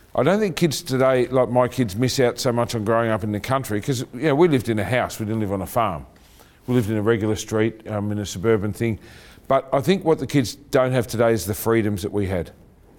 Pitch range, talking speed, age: 110-120 Hz, 260 wpm, 40-59